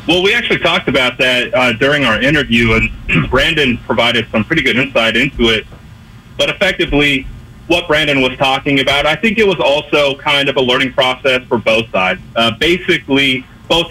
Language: English